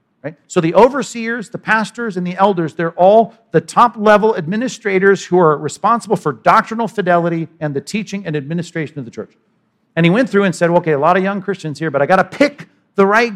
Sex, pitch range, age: male, 145-195 Hz, 50-69